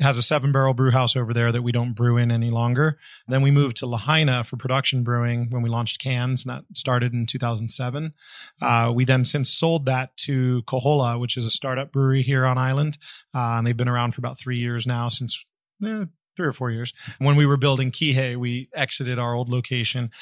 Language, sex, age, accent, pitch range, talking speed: English, male, 30-49, American, 120-140 Hz, 225 wpm